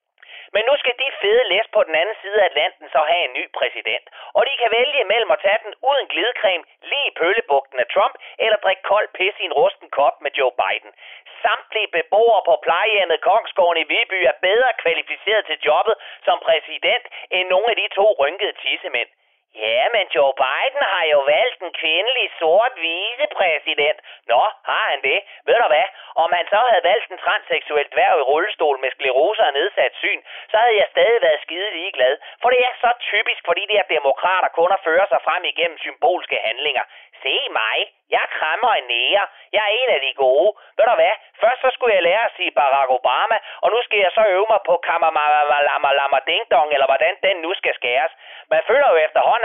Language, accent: Danish, native